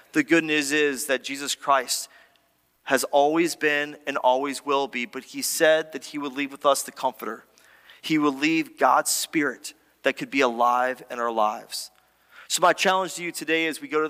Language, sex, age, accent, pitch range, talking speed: English, male, 30-49, American, 125-155 Hz, 200 wpm